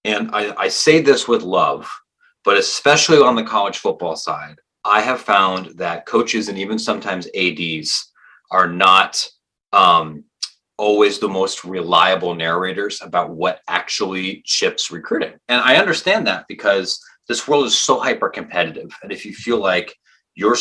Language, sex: English, male